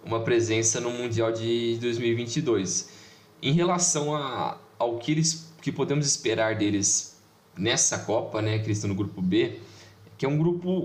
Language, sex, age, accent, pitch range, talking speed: Portuguese, male, 10-29, Brazilian, 110-160 Hz, 160 wpm